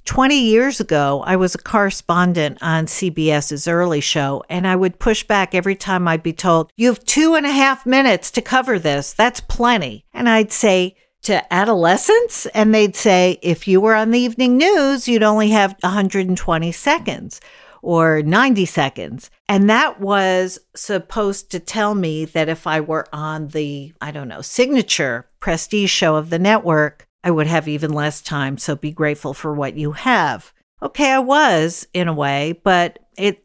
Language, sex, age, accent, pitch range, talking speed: English, female, 50-69, American, 155-215 Hz, 180 wpm